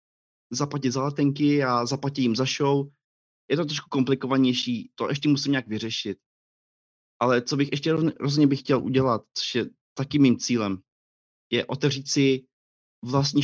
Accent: native